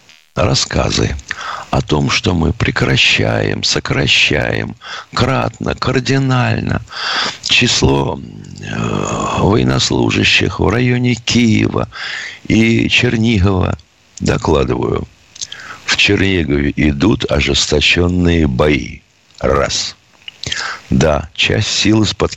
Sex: male